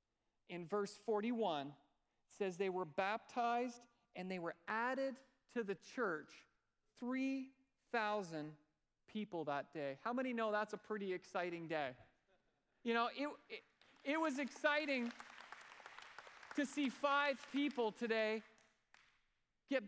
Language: English